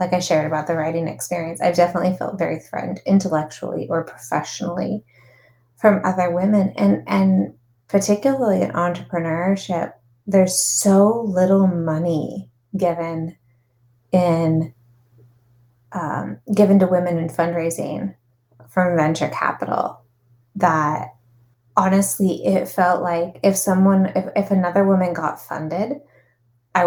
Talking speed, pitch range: 115 wpm, 125-195 Hz